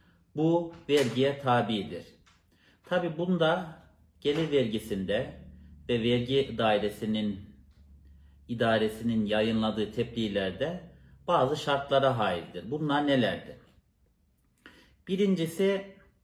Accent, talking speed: native, 70 wpm